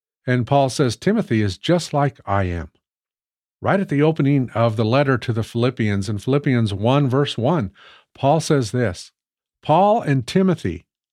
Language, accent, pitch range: English, American, 115-150 Hz